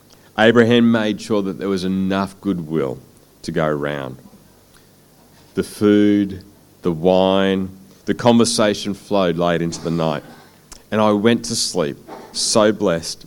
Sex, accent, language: male, Australian, English